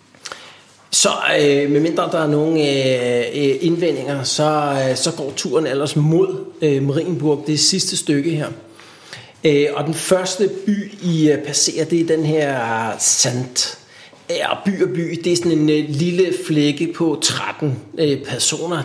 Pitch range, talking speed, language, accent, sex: 135-175 Hz, 130 wpm, Danish, native, male